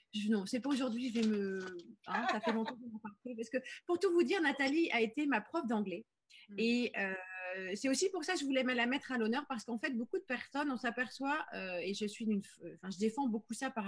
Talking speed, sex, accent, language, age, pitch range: 270 wpm, female, French, French, 30-49, 200-245 Hz